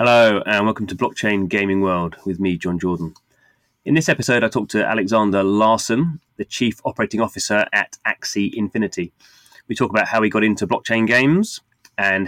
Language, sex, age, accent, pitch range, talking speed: English, male, 30-49, British, 95-120 Hz, 175 wpm